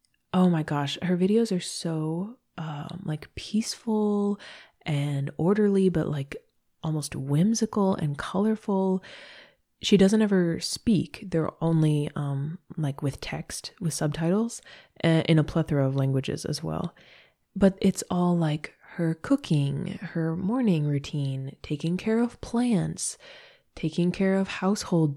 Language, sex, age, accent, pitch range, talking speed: English, female, 20-39, American, 150-190 Hz, 130 wpm